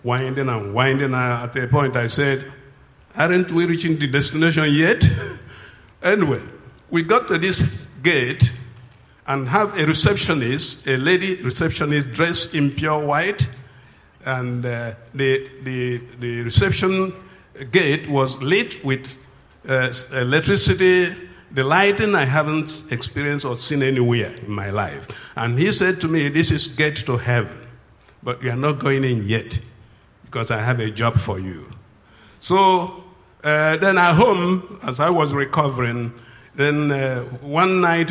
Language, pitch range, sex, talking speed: English, 125-160 Hz, male, 140 wpm